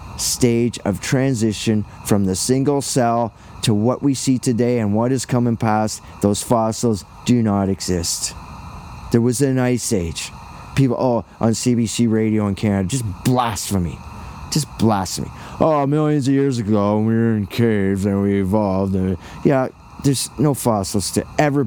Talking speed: 155 wpm